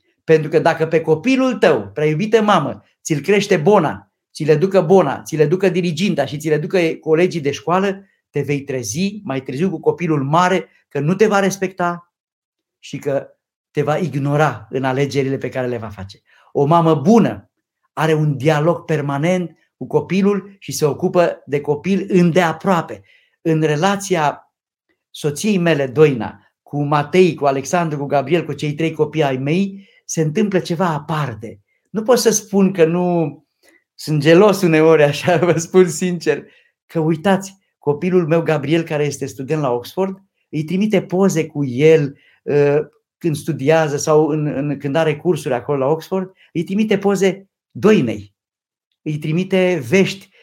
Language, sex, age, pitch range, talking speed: Romanian, male, 50-69, 150-185 Hz, 155 wpm